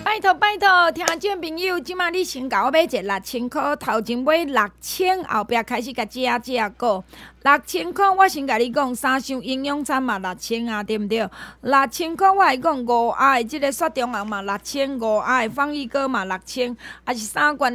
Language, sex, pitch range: Chinese, female, 235-315 Hz